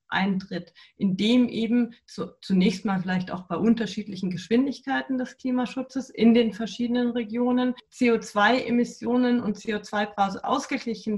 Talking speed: 105 wpm